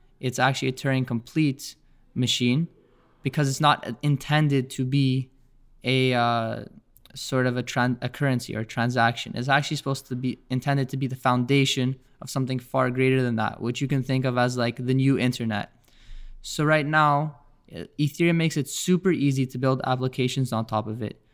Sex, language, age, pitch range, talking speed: male, English, 20-39, 125-140 Hz, 180 wpm